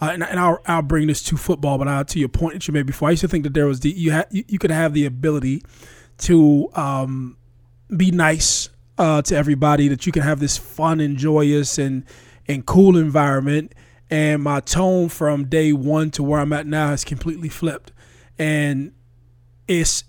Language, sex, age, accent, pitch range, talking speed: English, male, 20-39, American, 145-170 Hz, 205 wpm